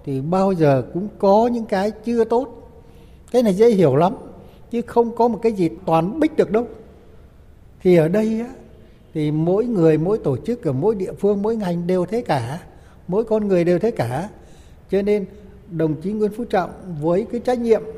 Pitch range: 150-220 Hz